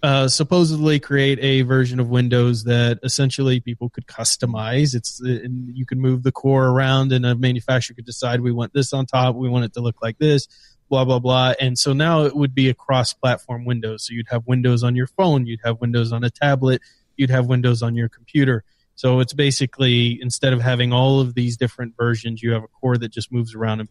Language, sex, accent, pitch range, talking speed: English, male, American, 120-135 Hz, 220 wpm